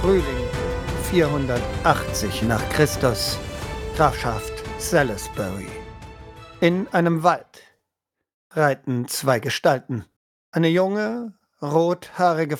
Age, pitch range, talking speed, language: 50-69, 130-175 Hz, 70 wpm, German